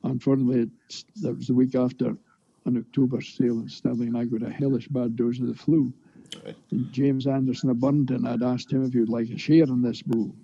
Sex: male